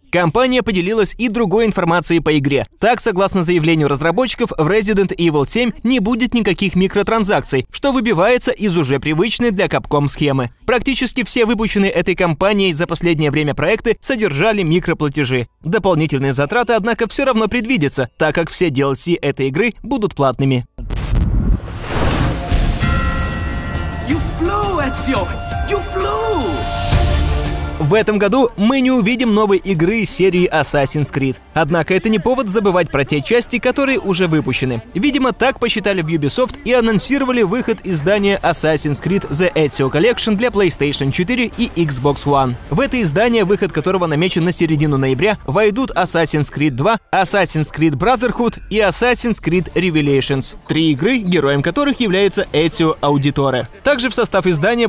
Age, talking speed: 20-39, 135 wpm